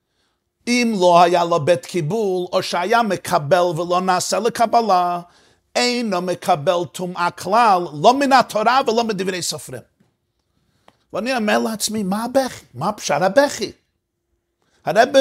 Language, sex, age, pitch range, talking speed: Hebrew, male, 50-69, 175-230 Hz, 120 wpm